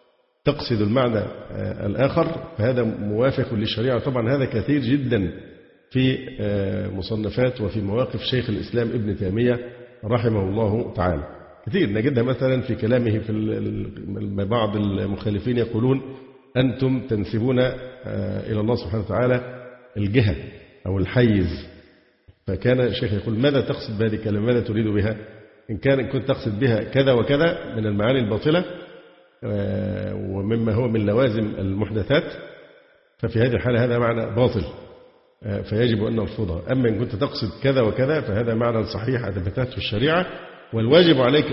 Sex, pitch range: male, 105-130 Hz